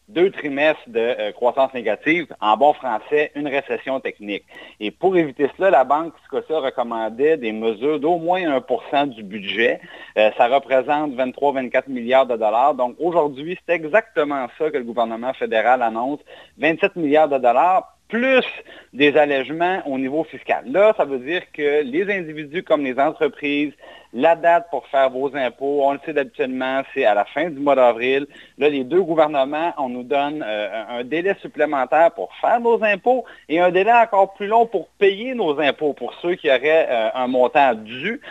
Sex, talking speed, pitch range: male, 180 wpm, 135-185 Hz